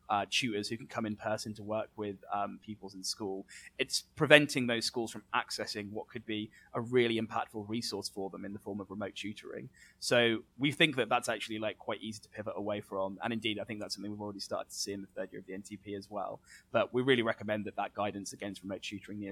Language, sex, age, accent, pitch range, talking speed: English, male, 20-39, British, 105-125 Hz, 240 wpm